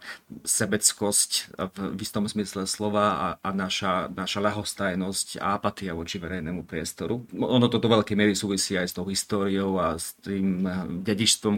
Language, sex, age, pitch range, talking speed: Slovak, male, 30-49, 95-105 Hz, 145 wpm